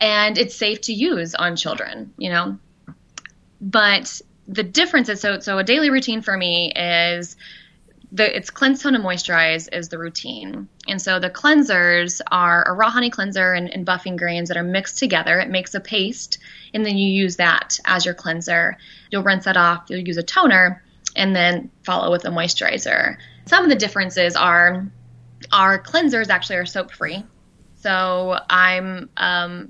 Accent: American